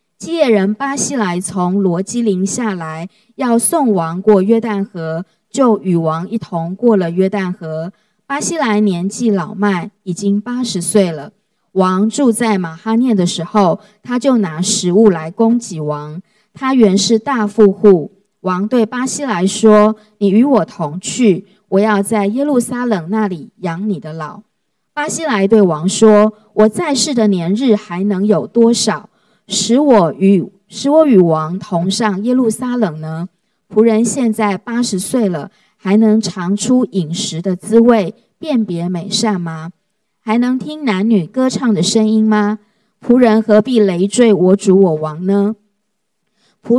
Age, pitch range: 20-39, 185-225 Hz